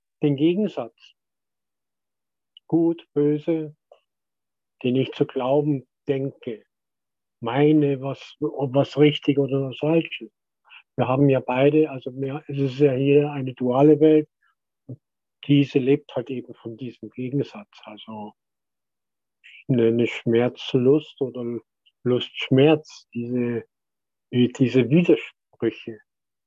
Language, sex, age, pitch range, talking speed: German, male, 50-69, 125-150 Hz, 100 wpm